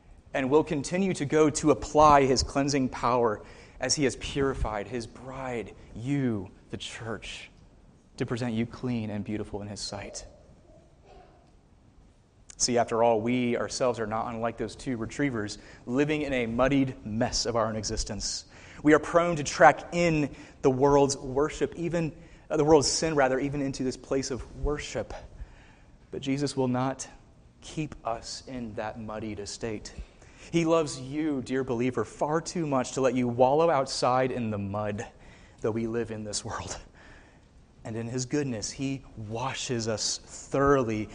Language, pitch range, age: English, 110-140 Hz, 30-49